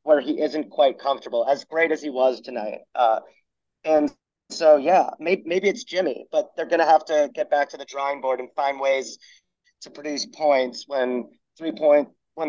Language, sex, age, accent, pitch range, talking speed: English, male, 30-49, American, 130-165 Hz, 195 wpm